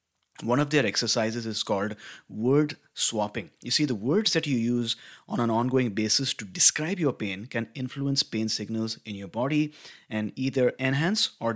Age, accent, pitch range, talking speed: 30-49, Indian, 110-145 Hz, 175 wpm